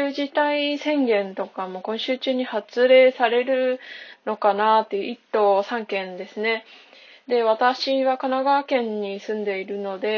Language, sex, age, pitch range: Japanese, female, 20-39, 205-255 Hz